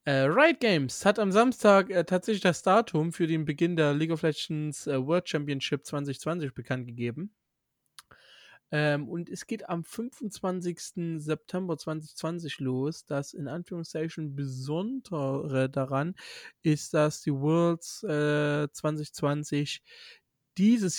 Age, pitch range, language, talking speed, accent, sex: 20-39, 140-175 Hz, German, 125 wpm, German, male